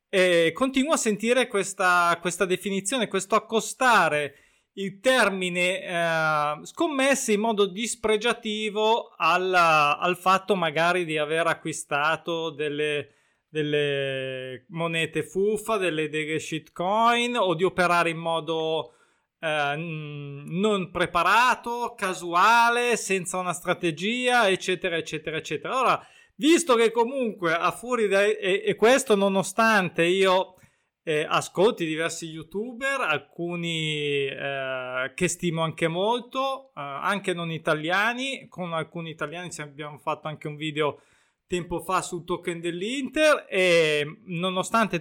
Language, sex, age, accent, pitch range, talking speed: Italian, male, 20-39, native, 165-210 Hz, 115 wpm